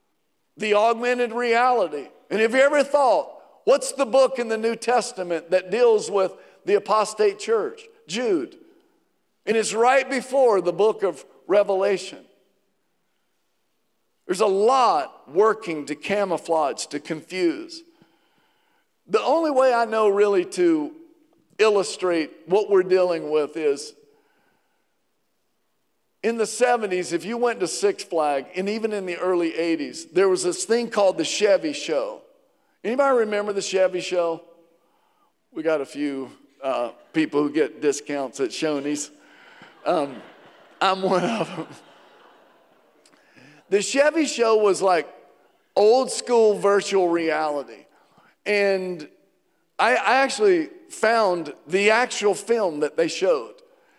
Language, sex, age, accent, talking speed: English, male, 50-69, American, 130 wpm